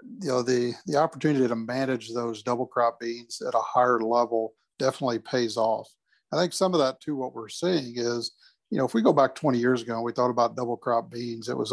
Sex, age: male, 50-69